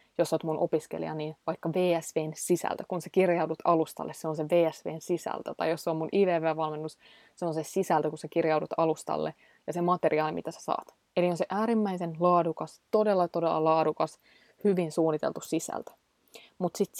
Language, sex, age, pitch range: Finnish, female, 20-39, 160-190 Hz